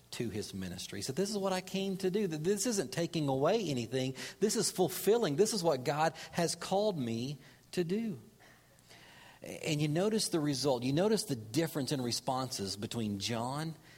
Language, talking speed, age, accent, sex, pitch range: English, 180 wpm, 40-59, American, male, 140-180 Hz